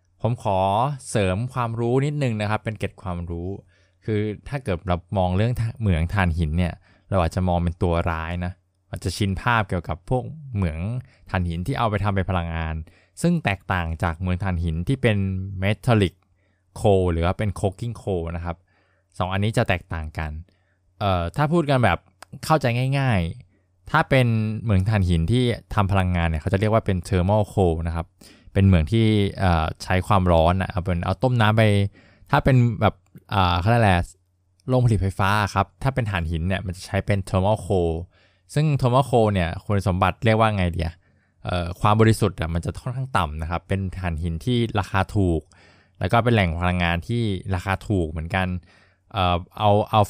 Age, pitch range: 20-39, 90-110 Hz